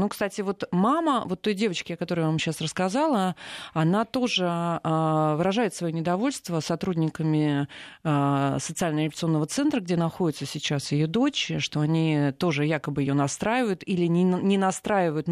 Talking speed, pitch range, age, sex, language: 150 wpm, 155-205 Hz, 30-49, female, Russian